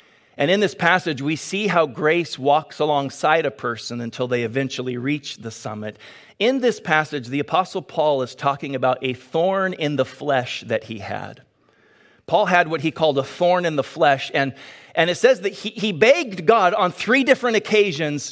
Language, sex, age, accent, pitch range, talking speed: English, male, 40-59, American, 145-200 Hz, 190 wpm